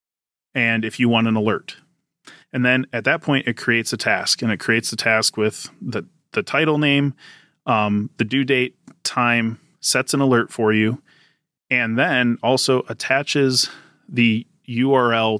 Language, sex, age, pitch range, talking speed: English, male, 30-49, 110-130 Hz, 160 wpm